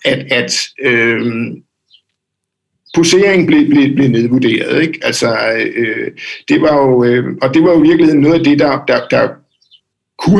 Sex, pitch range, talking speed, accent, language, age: male, 125-160 Hz, 155 wpm, native, Danish, 60-79